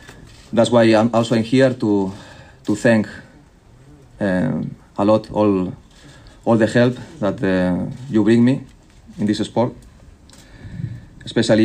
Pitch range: 95-120 Hz